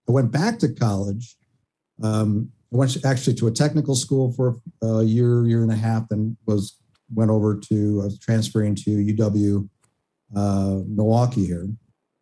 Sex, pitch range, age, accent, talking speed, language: male, 105-130 Hz, 50-69, American, 160 wpm, English